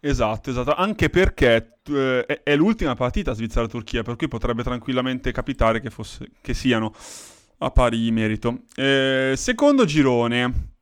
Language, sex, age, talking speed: Italian, male, 30-49, 140 wpm